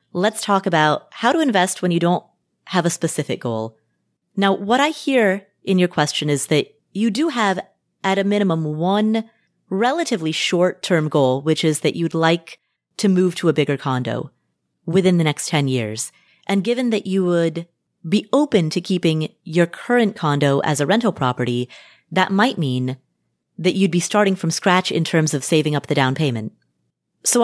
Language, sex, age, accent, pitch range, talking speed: English, female, 30-49, American, 150-200 Hz, 180 wpm